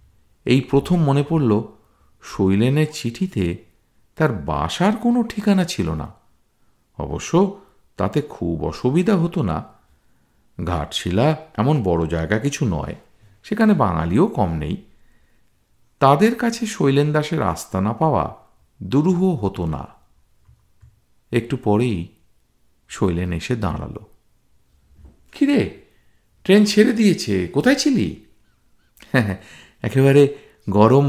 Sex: male